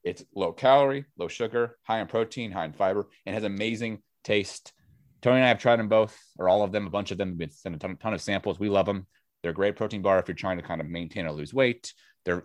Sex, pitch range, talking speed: male, 95-125 Hz, 270 wpm